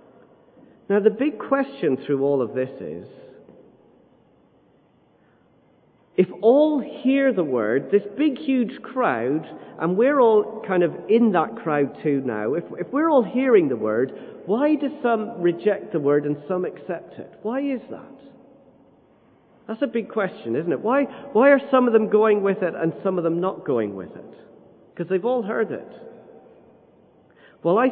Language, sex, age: English, male, 40-59